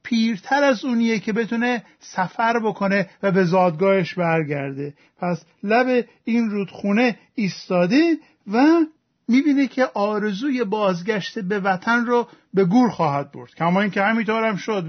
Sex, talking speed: male, 130 wpm